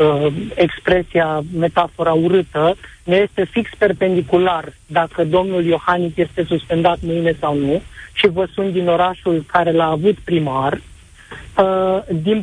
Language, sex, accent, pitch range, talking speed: Romanian, male, native, 165-195 Hz, 120 wpm